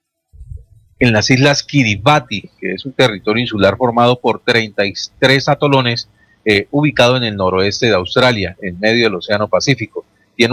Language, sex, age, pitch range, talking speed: Spanish, male, 40-59, 105-135 Hz, 150 wpm